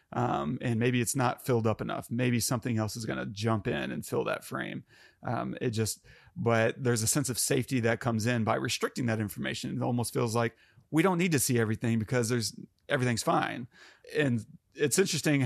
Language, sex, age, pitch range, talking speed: English, male, 30-49, 110-130 Hz, 205 wpm